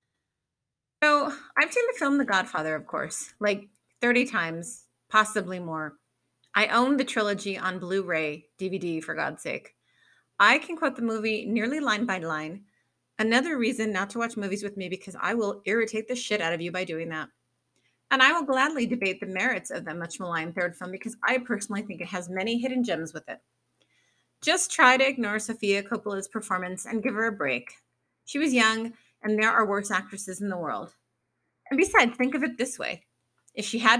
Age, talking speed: 30-49, 195 wpm